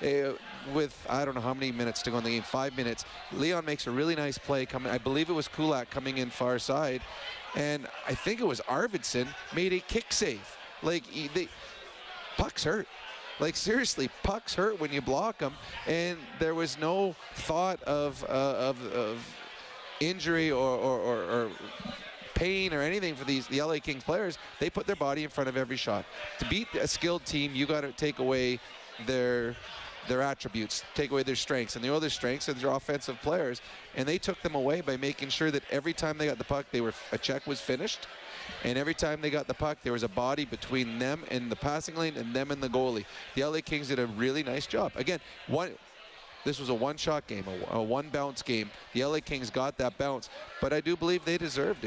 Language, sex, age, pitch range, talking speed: English, male, 30-49, 130-155 Hz, 210 wpm